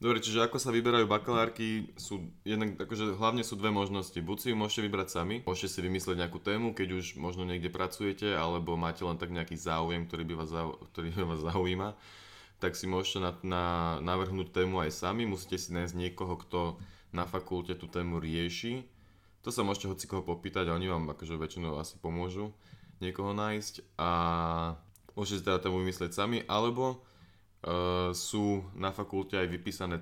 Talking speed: 180 wpm